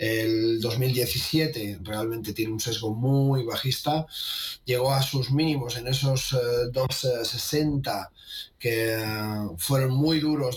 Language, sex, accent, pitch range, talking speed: Spanish, male, Spanish, 110-135 Hz, 115 wpm